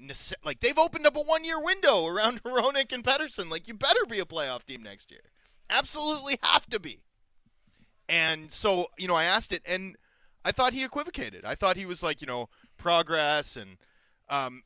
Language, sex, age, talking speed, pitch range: English, male, 30-49, 190 wpm, 160-225 Hz